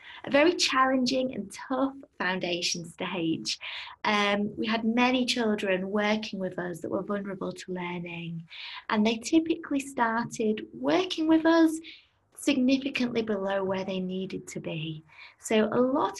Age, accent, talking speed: 20-39, British, 135 wpm